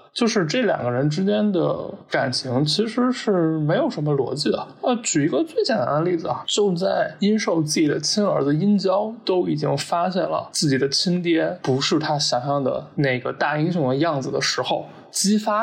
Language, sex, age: Chinese, male, 20-39